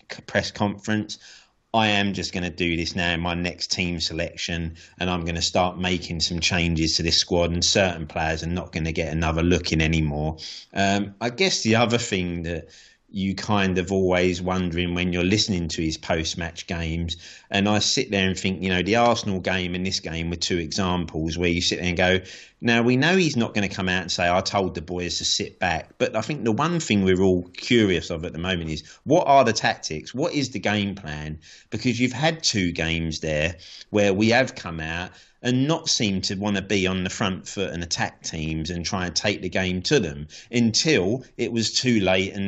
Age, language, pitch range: 30-49, English, 85-110 Hz